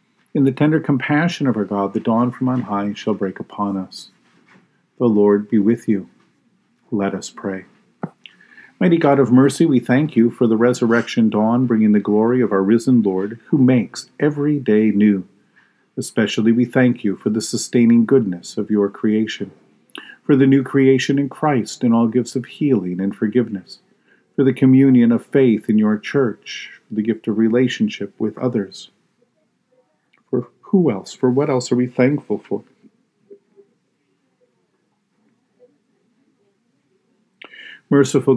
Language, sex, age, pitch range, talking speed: English, male, 50-69, 105-135 Hz, 150 wpm